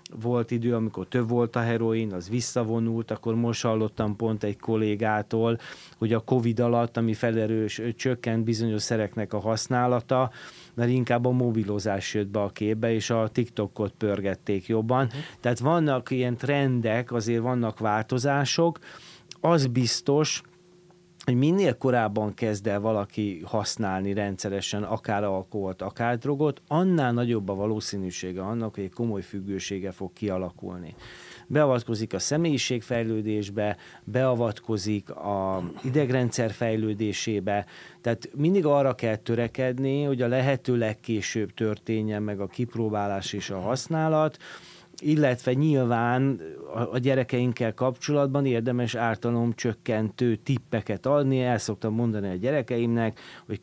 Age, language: 30-49, Hungarian